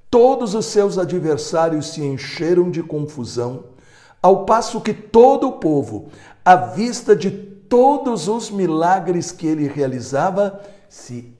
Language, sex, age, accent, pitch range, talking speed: Portuguese, male, 60-79, Brazilian, 130-205 Hz, 125 wpm